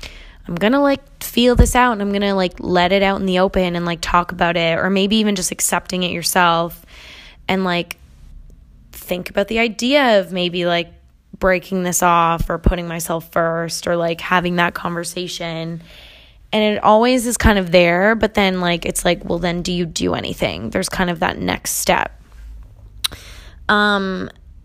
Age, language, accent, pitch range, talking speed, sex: 10-29, English, American, 170-200 Hz, 185 wpm, female